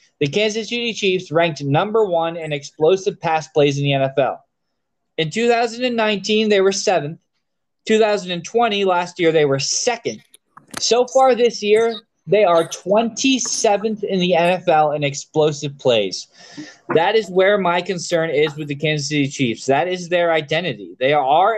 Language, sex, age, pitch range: English, male, 20-39, 150-205 Hz